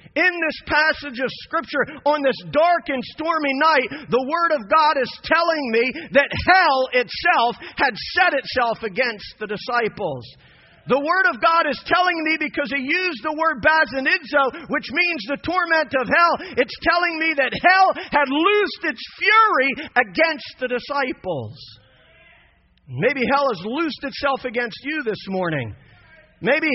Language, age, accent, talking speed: English, 40-59, American, 155 wpm